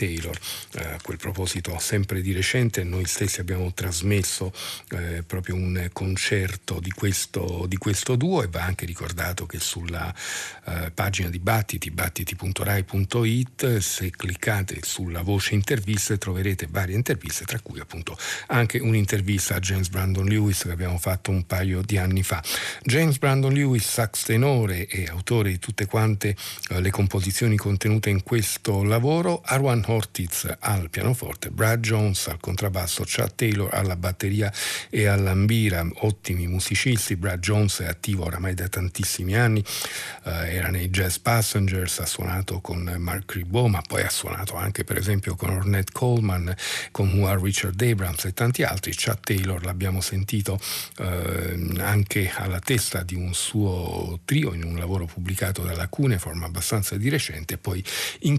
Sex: male